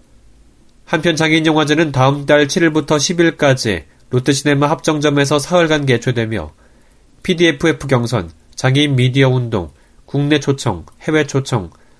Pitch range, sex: 110-150 Hz, male